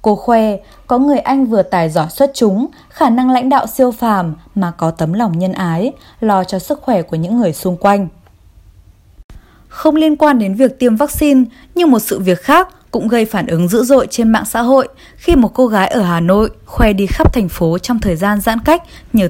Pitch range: 180-250 Hz